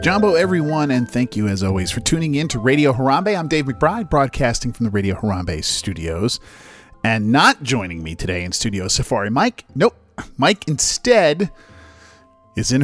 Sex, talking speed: male, 170 wpm